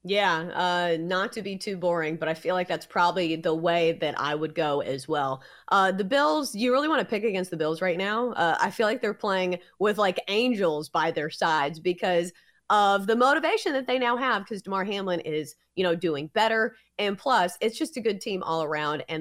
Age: 30-49